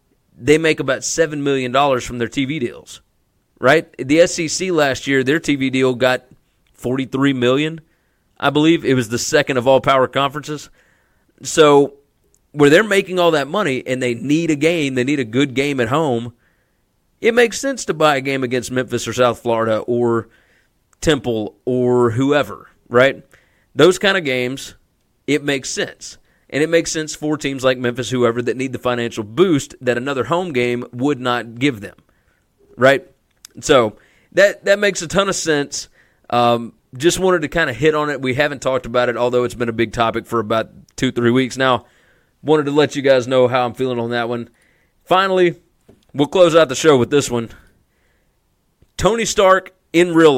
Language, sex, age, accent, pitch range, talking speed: English, male, 30-49, American, 125-160 Hz, 185 wpm